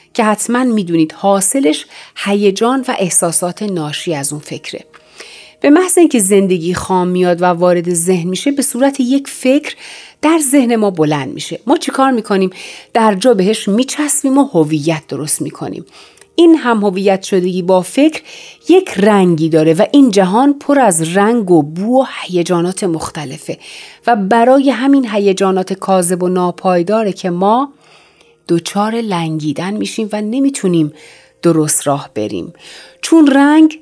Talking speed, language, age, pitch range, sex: 140 wpm, Persian, 40-59, 180-255 Hz, female